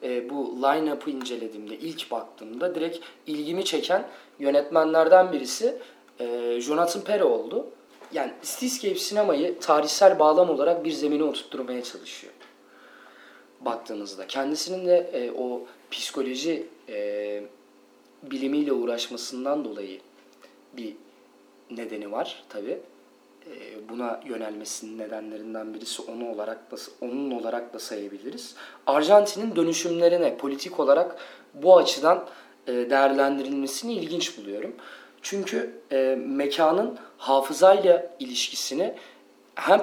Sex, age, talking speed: male, 30-49, 100 wpm